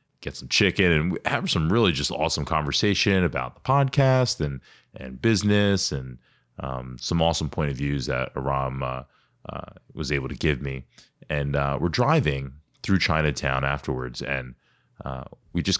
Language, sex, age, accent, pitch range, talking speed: English, male, 30-49, American, 70-100 Hz, 165 wpm